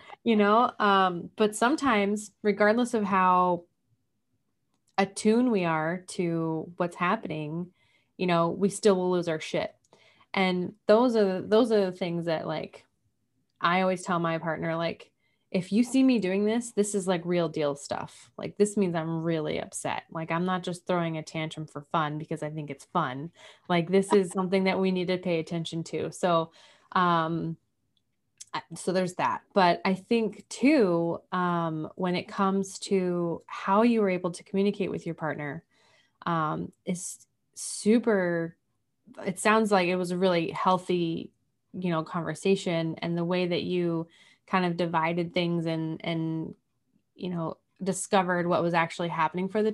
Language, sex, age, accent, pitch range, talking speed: English, female, 20-39, American, 165-195 Hz, 165 wpm